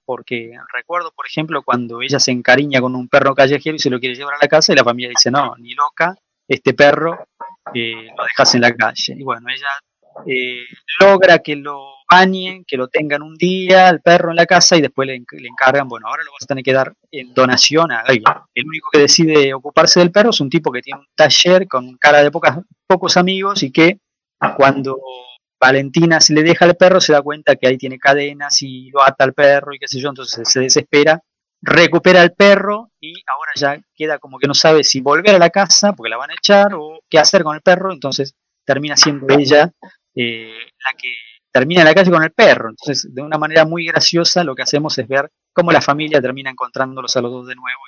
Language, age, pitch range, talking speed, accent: Spanish, 20-39, 130-170 Hz, 225 wpm, Argentinian